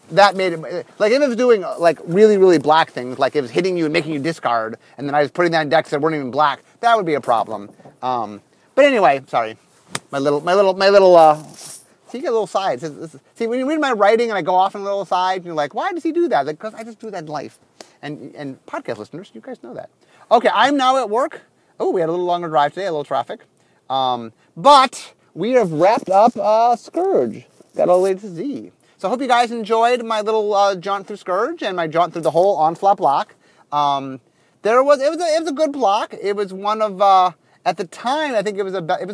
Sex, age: male, 30-49